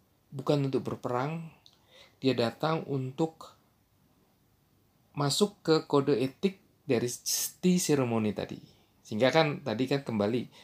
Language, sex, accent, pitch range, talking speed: Indonesian, male, native, 115-140 Hz, 105 wpm